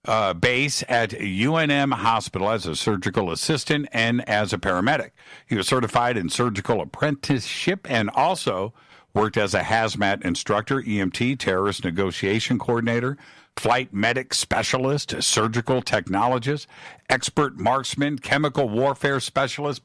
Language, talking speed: English, 120 wpm